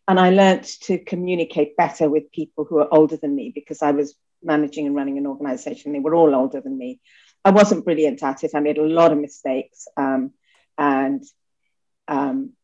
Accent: British